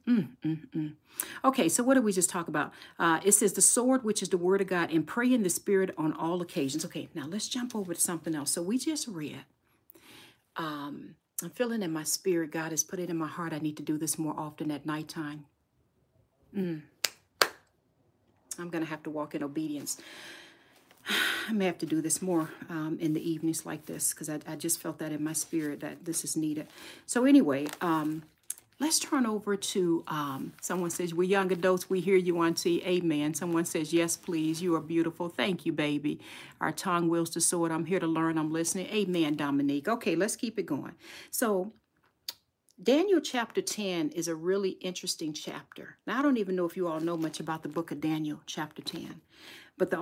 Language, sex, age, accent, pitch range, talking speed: English, female, 40-59, American, 155-195 Hz, 210 wpm